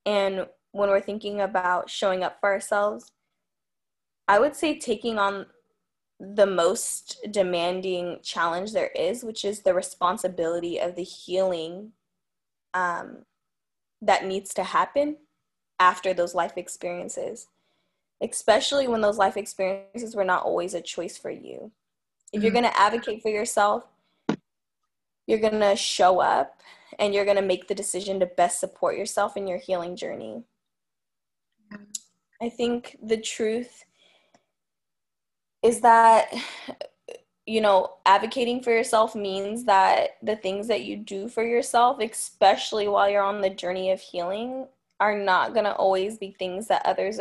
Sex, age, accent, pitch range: female, 10-29, American, 190-225 Hz